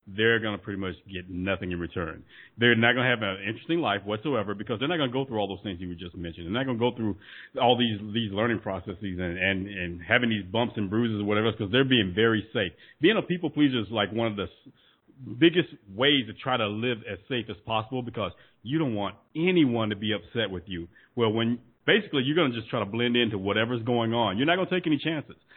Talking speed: 250 wpm